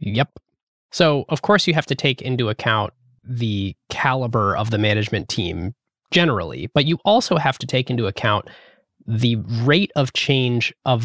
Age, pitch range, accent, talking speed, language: 20-39, 115-155 Hz, American, 165 wpm, English